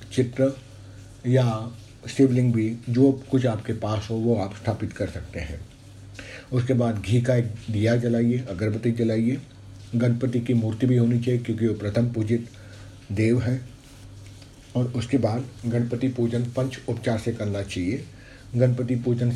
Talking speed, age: 150 wpm, 50-69